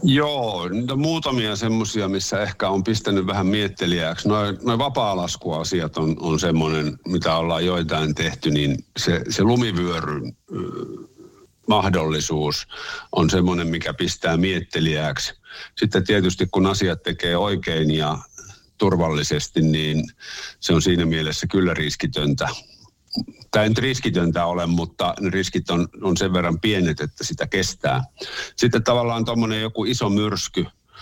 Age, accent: 50-69, native